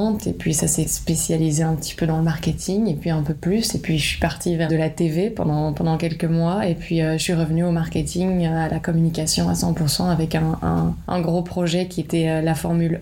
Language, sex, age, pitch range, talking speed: French, female, 20-39, 160-175 Hz, 250 wpm